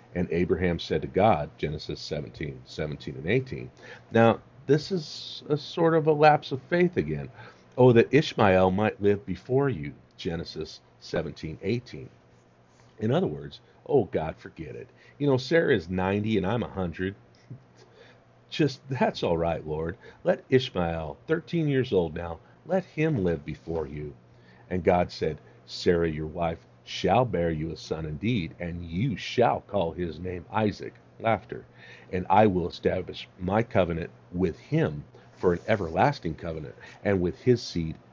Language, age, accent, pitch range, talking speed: English, 50-69, American, 80-120 Hz, 155 wpm